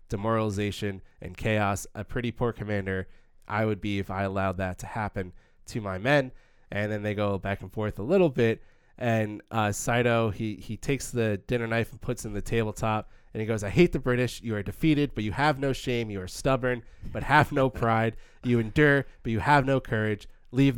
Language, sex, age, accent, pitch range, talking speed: English, male, 20-39, American, 100-125 Hz, 210 wpm